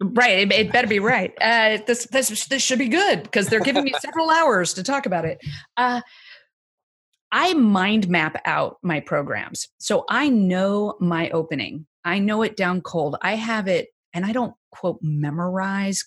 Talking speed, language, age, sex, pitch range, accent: 175 wpm, English, 30-49, female, 165-225 Hz, American